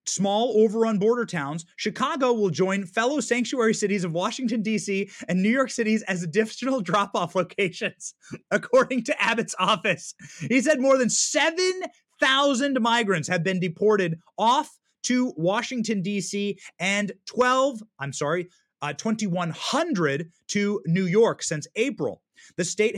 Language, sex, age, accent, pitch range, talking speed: English, male, 30-49, American, 170-235 Hz, 140 wpm